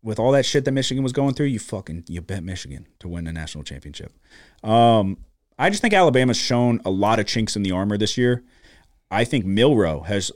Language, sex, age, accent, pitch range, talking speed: English, male, 30-49, American, 90-115 Hz, 220 wpm